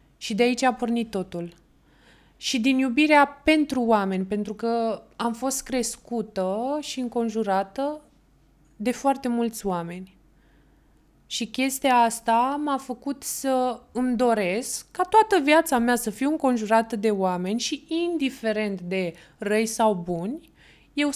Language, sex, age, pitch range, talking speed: Romanian, female, 20-39, 195-260 Hz, 130 wpm